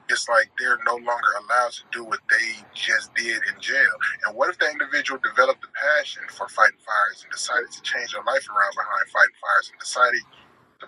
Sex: male